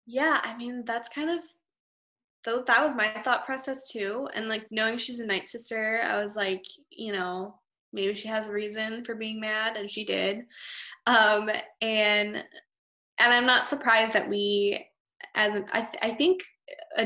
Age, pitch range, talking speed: 10-29, 205-240 Hz, 180 wpm